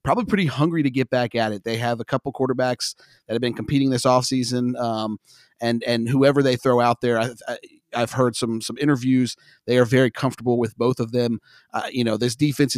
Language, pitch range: English, 120-150 Hz